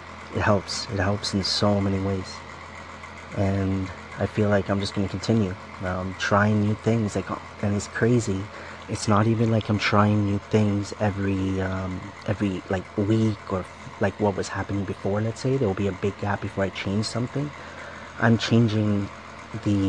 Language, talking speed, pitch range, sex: English, 180 wpm, 95-105 Hz, male